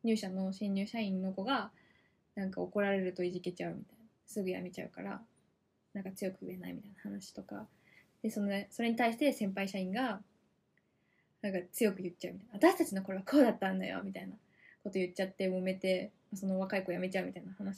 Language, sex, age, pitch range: Japanese, female, 10-29, 195-255 Hz